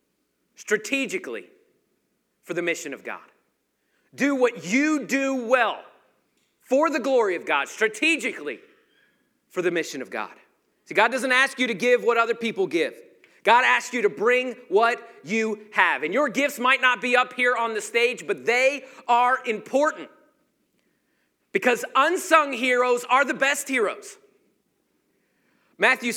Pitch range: 220-305 Hz